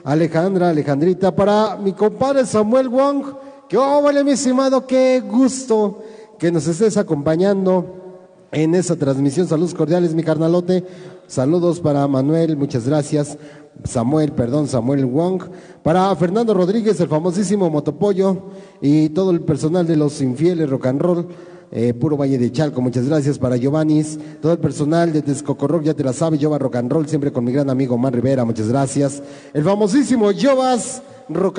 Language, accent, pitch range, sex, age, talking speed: Spanish, Mexican, 150-200 Hz, male, 40-59, 160 wpm